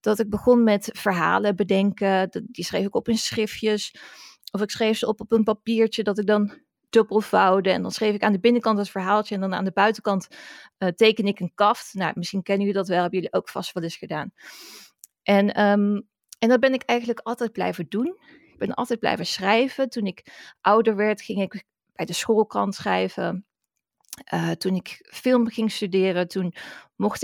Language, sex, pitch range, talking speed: Dutch, female, 195-235 Hz, 195 wpm